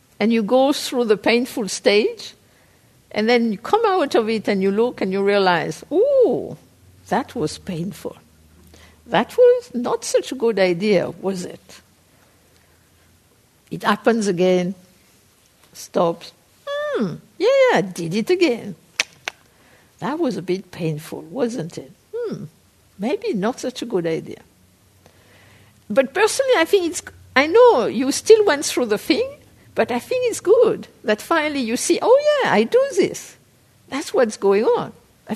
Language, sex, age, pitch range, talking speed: English, female, 60-79, 180-275 Hz, 155 wpm